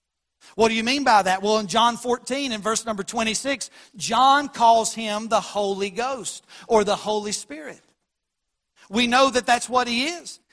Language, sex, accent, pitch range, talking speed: English, male, American, 215-260 Hz, 175 wpm